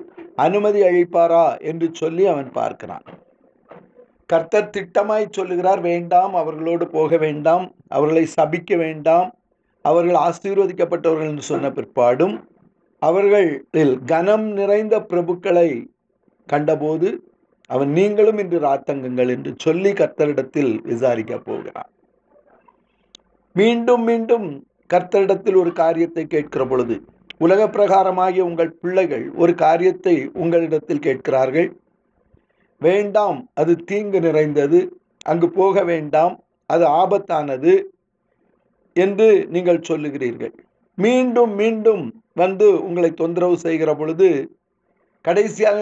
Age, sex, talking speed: 50-69, male, 90 wpm